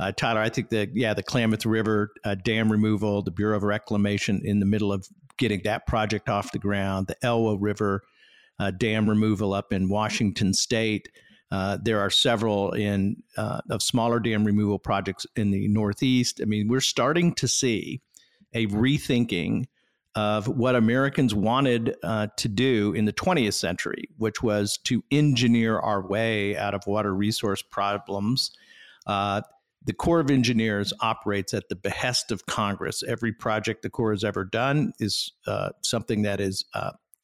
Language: English